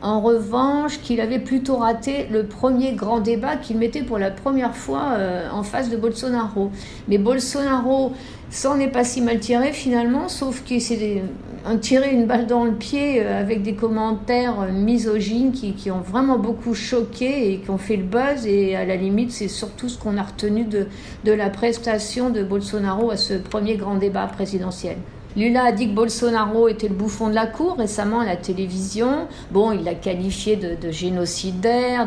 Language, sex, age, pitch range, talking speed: French, female, 50-69, 195-240 Hz, 180 wpm